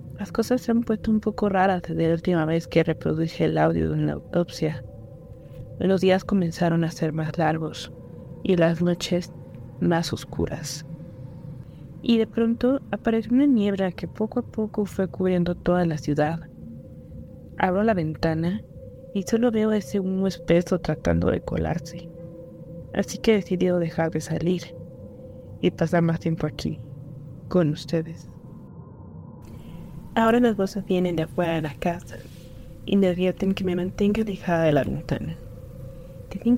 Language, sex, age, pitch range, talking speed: Spanish, female, 20-39, 155-190 Hz, 155 wpm